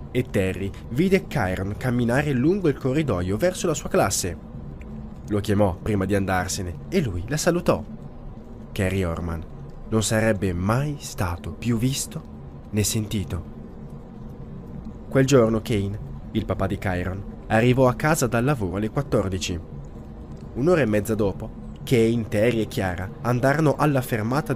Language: Italian